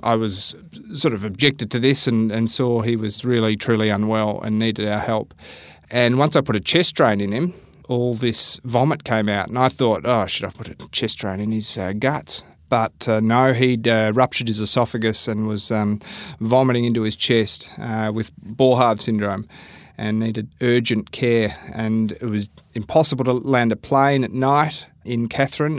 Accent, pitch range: Australian, 110-125 Hz